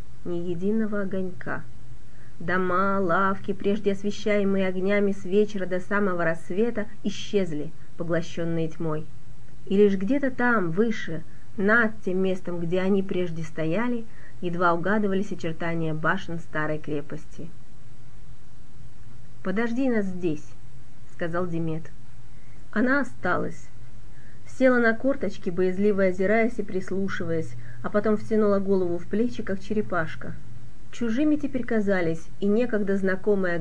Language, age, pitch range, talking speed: Russian, 30-49, 160-210 Hz, 110 wpm